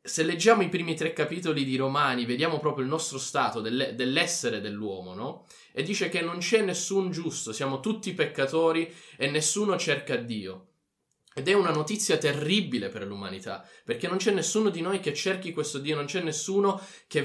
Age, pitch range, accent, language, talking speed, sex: 20-39, 135-185 Hz, native, Italian, 175 wpm, male